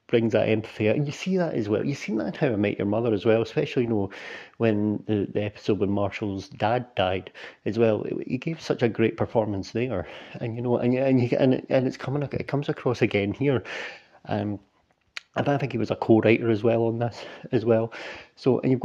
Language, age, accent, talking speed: English, 40-59, British, 225 wpm